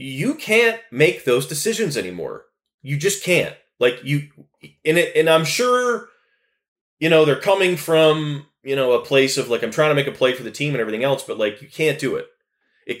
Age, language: 30-49, English